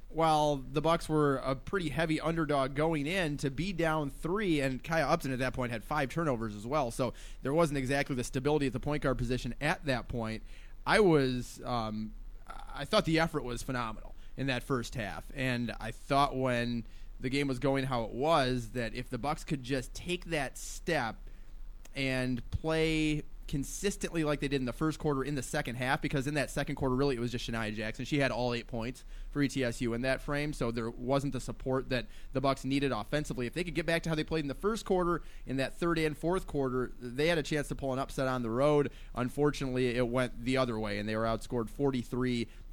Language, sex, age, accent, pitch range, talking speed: English, male, 30-49, American, 120-150 Hz, 220 wpm